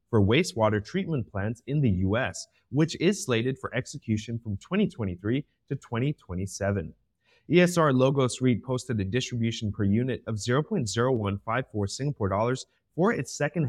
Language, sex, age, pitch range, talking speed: English, male, 30-49, 105-135 Hz, 135 wpm